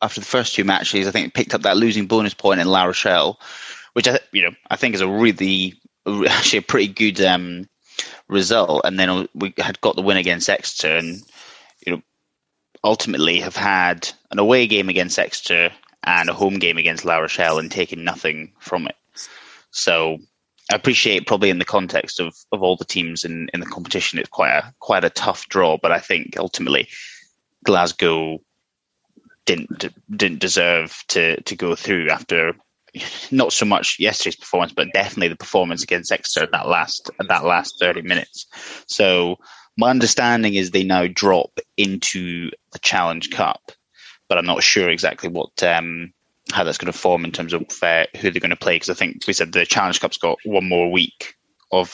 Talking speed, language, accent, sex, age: 190 wpm, English, British, male, 20-39